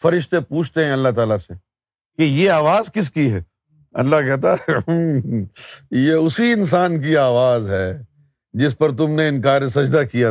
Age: 50-69